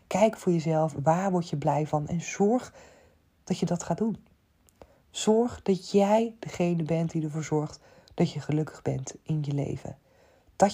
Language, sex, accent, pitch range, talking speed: Dutch, female, Dutch, 150-185 Hz, 175 wpm